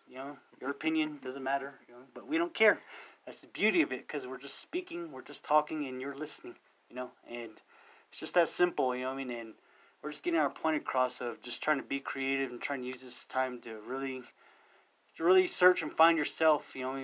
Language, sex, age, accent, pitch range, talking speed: English, male, 30-49, American, 125-145 Hz, 245 wpm